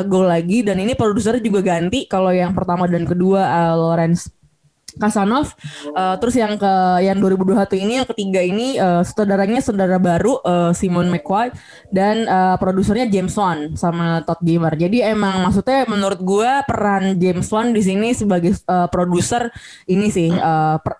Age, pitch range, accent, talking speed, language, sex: 20-39, 180-215 Hz, native, 165 wpm, Indonesian, female